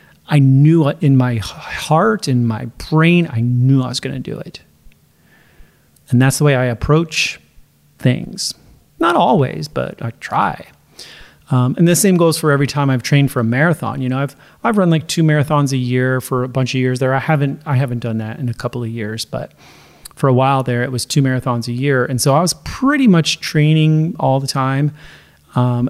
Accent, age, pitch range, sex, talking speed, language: American, 30-49, 125-150 Hz, male, 210 wpm, English